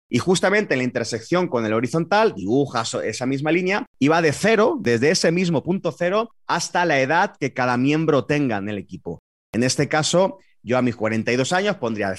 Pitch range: 120-165 Hz